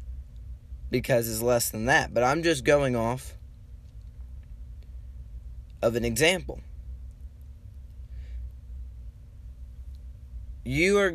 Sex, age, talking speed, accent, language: male, 20-39, 80 wpm, American, English